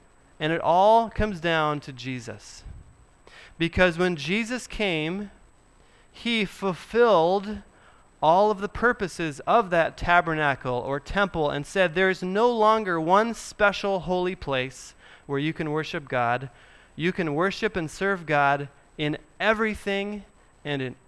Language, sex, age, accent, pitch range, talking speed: English, male, 30-49, American, 135-185 Hz, 135 wpm